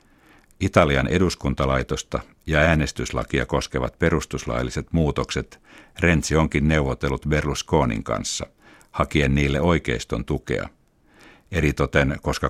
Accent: native